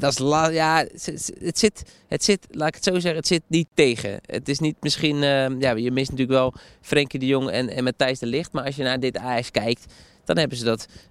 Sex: male